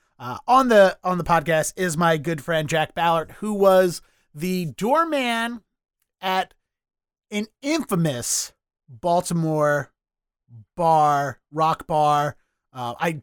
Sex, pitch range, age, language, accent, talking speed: male, 155-190 Hz, 30-49, English, American, 110 wpm